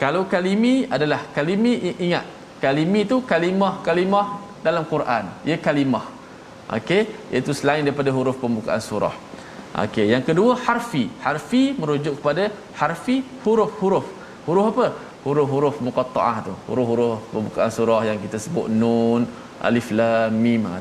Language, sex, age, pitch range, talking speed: Malayalam, male, 20-39, 125-190 Hz, 125 wpm